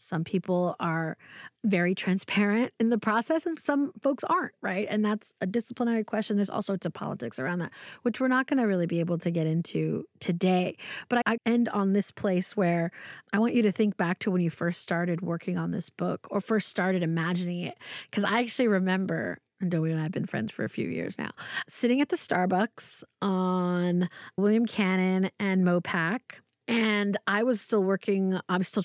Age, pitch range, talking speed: 30-49, 180-230 Hz, 200 wpm